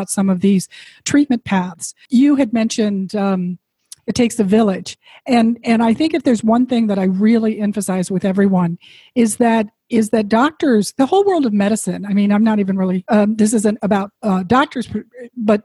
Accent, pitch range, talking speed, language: American, 200-250 Hz, 190 wpm, English